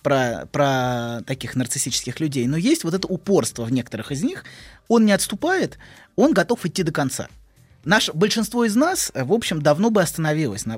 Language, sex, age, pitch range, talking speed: Russian, male, 20-39, 125-180 Hz, 165 wpm